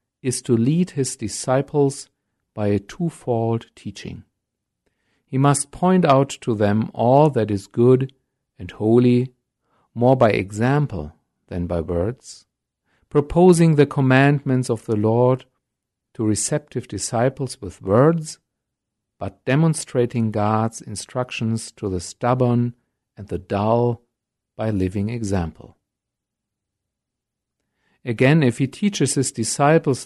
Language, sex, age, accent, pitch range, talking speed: English, male, 50-69, German, 105-135 Hz, 115 wpm